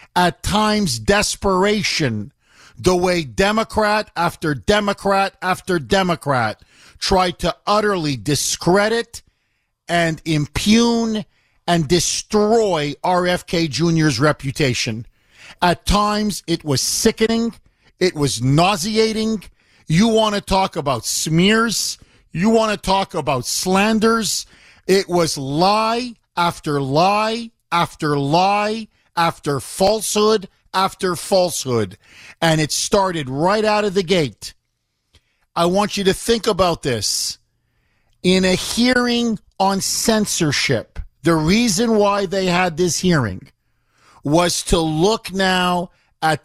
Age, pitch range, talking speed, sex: 50-69, 150-200 Hz, 110 wpm, male